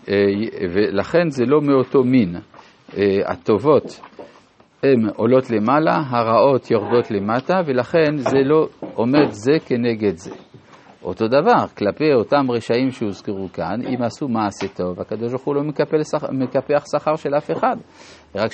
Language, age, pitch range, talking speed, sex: Hebrew, 50-69, 110-155 Hz, 125 wpm, male